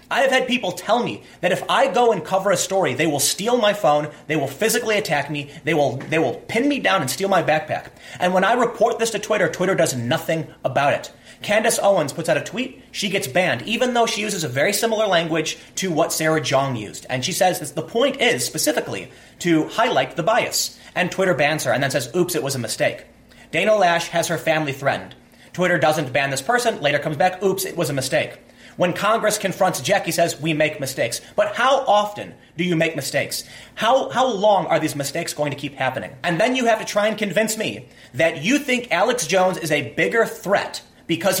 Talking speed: 230 wpm